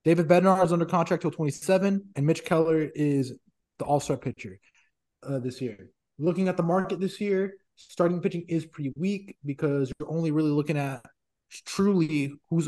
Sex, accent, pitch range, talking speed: male, American, 135-175 Hz, 170 wpm